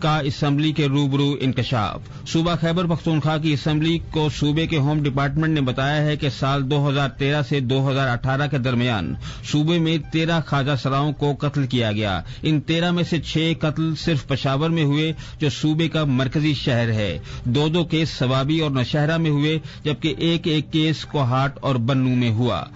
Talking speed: 185 wpm